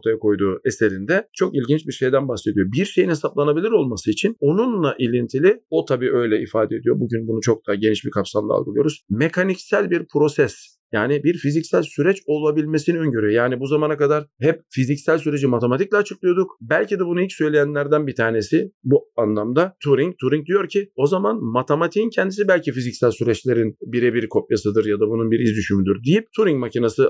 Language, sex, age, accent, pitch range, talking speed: Turkish, male, 40-59, native, 115-160 Hz, 165 wpm